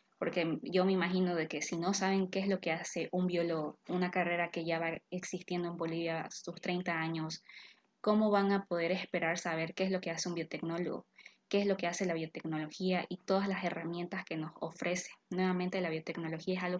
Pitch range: 170-190 Hz